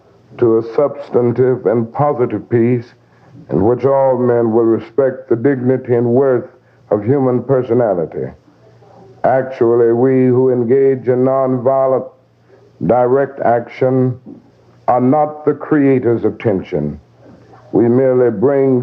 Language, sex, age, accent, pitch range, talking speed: English, male, 60-79, American, 120-135 Hz, 115 wpm